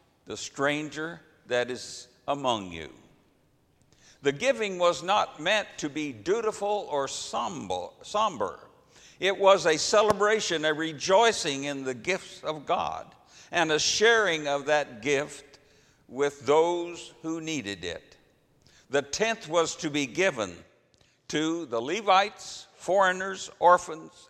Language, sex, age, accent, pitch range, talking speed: English, male, 60-79, American, 140-180 Hz, 120 wpm